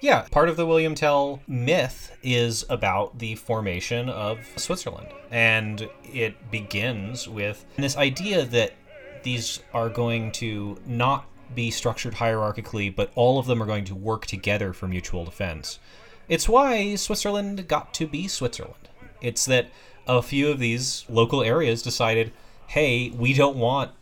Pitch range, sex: 105-130 Hz, male